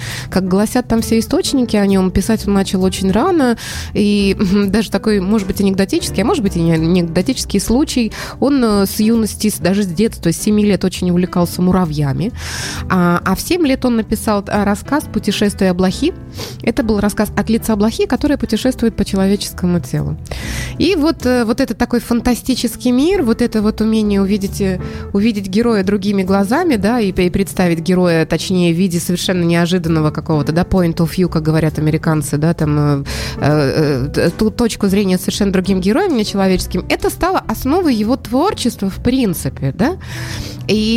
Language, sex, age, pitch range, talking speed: Russian, female, 20-39, 185-245 Hz, 165 wpm